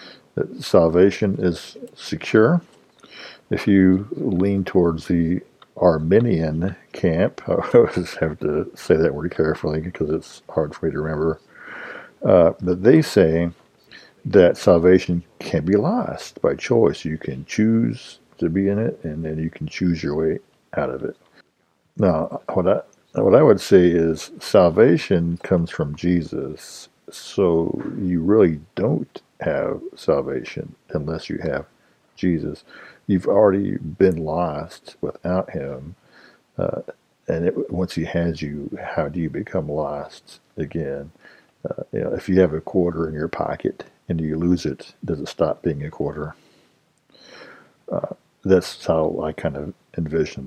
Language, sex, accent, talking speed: English, male, American, 145 wpm